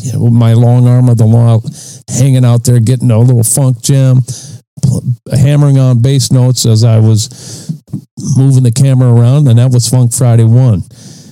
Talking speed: 175 wpm